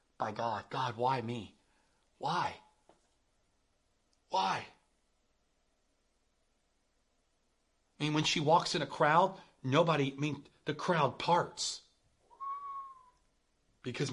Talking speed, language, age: 95 wpm, English, 40-59